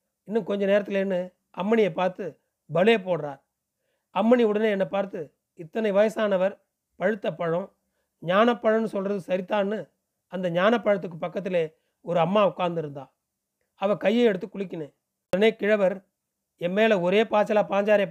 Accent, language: native, Tamil